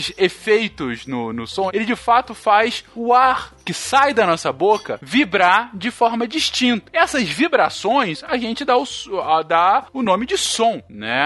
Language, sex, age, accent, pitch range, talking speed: Portuguese, male, 20-39, Brazilian, 195-265 Hz, 165 wpm